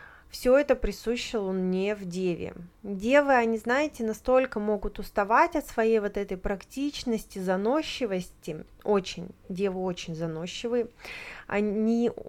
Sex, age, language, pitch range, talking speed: female, 20-39, Russian, 185-235 Hz, 110 wpm